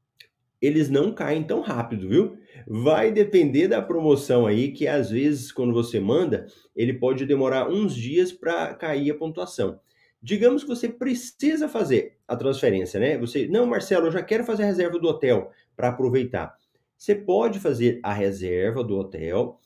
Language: Portuguese